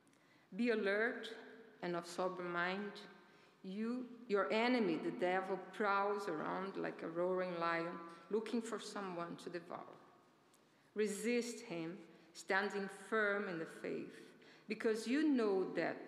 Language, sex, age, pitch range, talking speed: English, female, 50-69, 175-220 Hz, 120 wpm